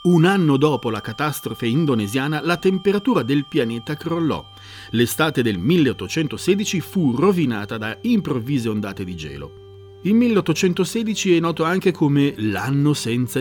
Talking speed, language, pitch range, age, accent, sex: 130 wpm, Italian, 110-175 Hz, 40-59, native, male